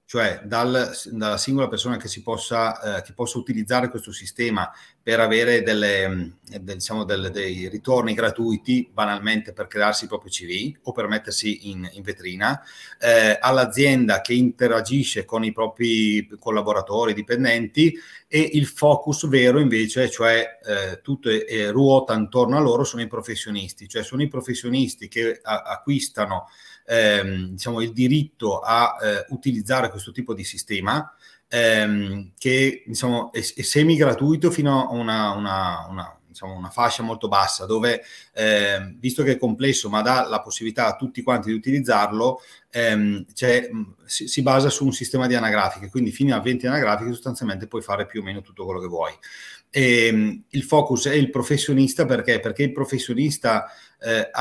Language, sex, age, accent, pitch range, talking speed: Italian, male, 30-49, native, 105-135 Hz, 150 wpm